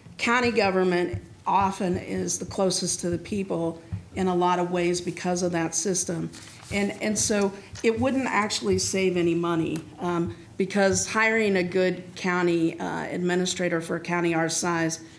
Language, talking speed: English, 160 wpm